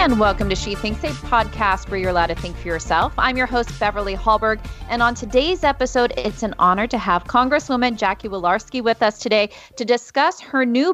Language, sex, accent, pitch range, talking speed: English, female, American, 185-240 Hz, 210 wpm